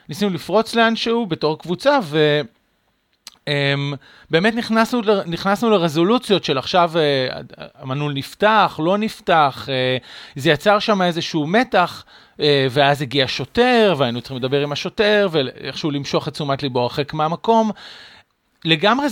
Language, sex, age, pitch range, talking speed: Hebrew, male, 40-59, 140-195 Hz, 115 wpm